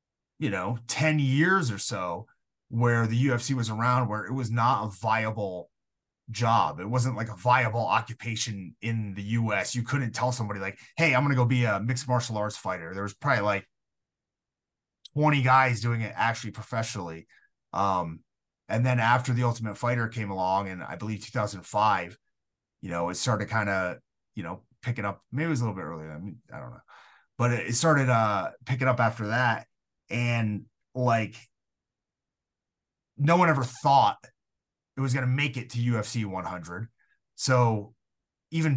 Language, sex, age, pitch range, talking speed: English, male, 30-49, 105-125 Hz, 180 wpm